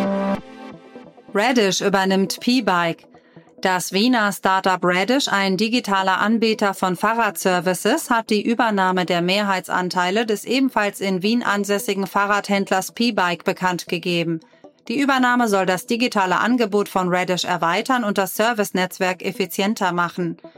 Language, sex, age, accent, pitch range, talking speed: German, female, 30-49, German, 185-215 Hz, 115 wpm